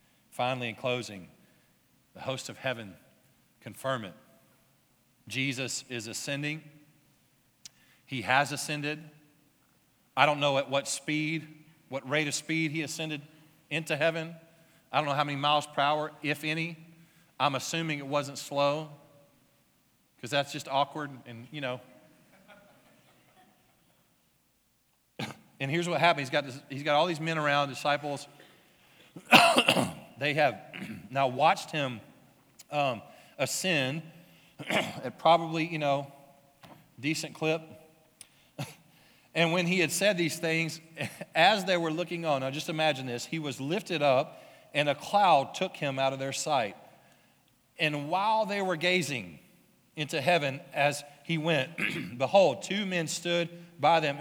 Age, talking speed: 40-59, 135 wpm